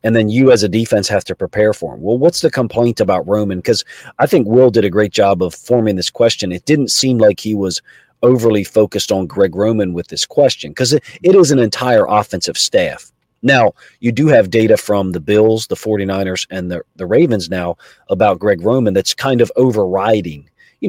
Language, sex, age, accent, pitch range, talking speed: English, male, 40-59, American, 100-125 Hz, 215 wpm